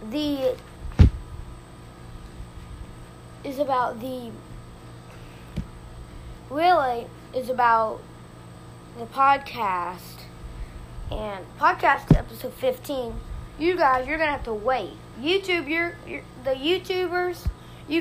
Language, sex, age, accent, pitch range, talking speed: English, female, 20-39, American, 210-300 Hz, 85 wpm